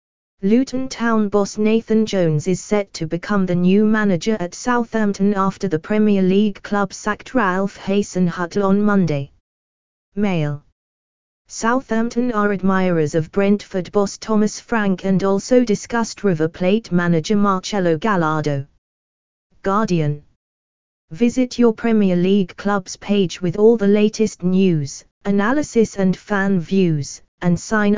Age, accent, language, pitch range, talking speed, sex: 20-39, British, English, 160-210 Hz, 125 wpm, female